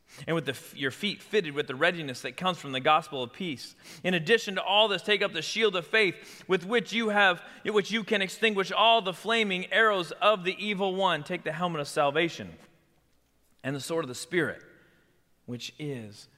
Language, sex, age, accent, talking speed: English, male, 30-49, American, 210 wpm